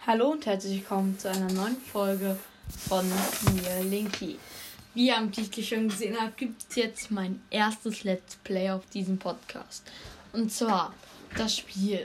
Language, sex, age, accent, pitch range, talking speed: German, female, 10-29, German, 195-235 Hz, 160 wpm